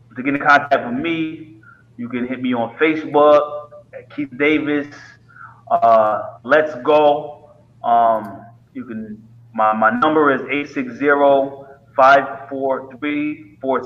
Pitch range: 120-155 Hz